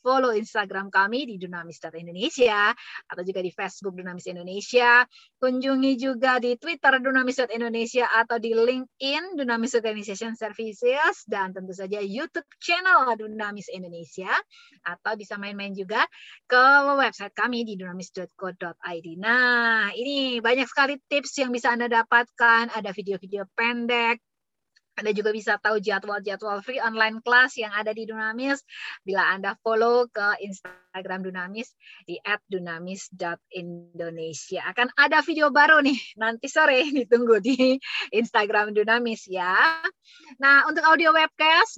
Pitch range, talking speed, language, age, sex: 200-270 Hz, 125 wpm, English, 20-39, female